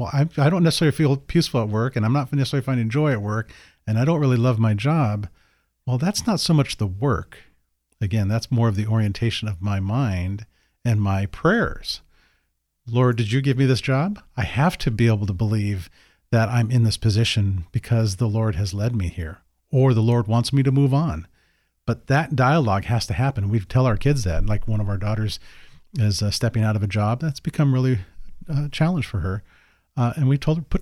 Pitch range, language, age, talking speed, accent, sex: 100-135 Hz, English, 40-59, 220 wpm, American, male